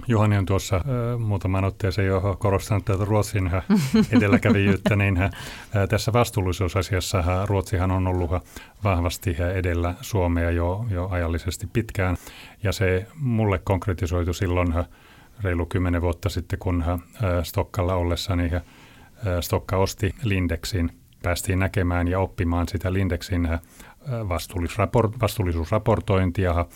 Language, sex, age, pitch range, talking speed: Finnish, male, 30-49, 85-105 Hz, 115 wpm